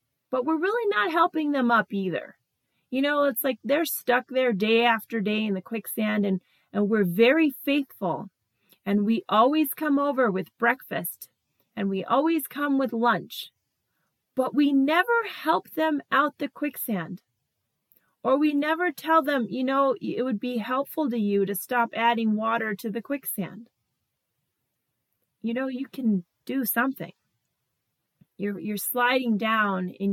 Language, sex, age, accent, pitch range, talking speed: English, female, 30-49, American, 175-250 Hz, 155 wpm